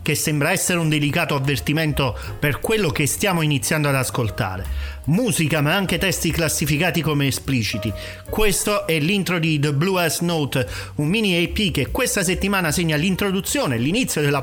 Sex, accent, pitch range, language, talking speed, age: male, native, 135-180 Hz, Italian, 160 wpm, 40-59